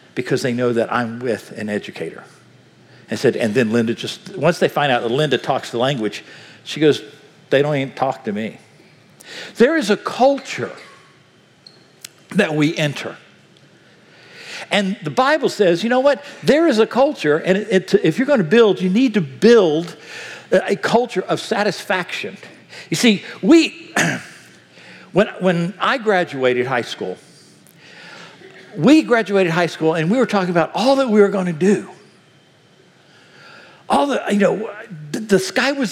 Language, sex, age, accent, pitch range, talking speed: English, male, 60-79, American, 165-230 Hz, 160 wpm